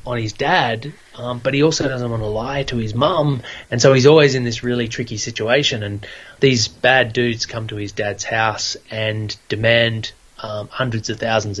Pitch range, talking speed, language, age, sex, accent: 110-130 Hz, 195 wpm, English, 20-39, male, Australian